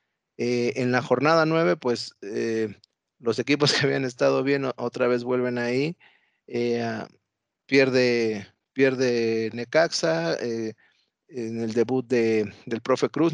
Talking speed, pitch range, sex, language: 130 wpm, 115-135 Hz, male, Spanish